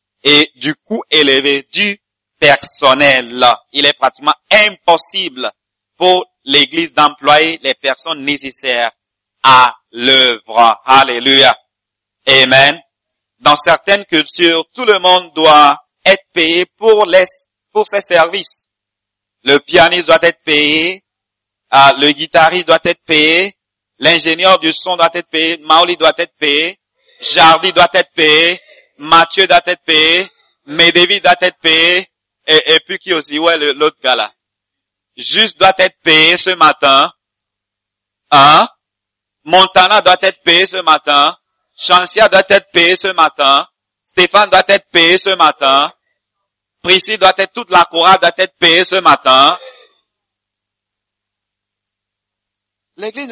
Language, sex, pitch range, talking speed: English, male, 130-185 Hz, 125 wpm